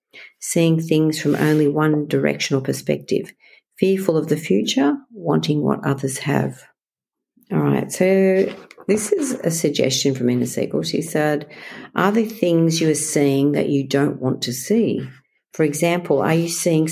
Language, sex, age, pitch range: English, female, 50-69, 140-175 Hz